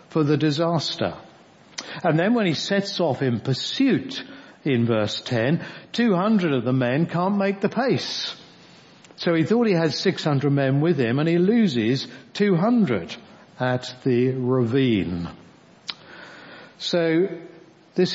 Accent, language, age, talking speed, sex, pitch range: British, English, 60-79, 130 wpm, male, 125-175 Hz